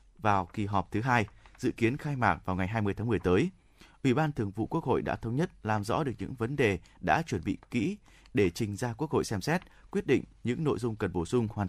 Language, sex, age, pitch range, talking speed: Vietnamese, male, 20-39, 105-135 Hz, 255 wpm